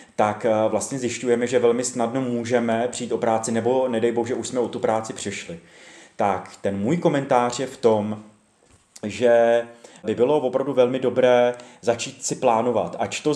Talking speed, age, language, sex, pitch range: 165 wpm, 30-49, Czech, male, 115-130 Hz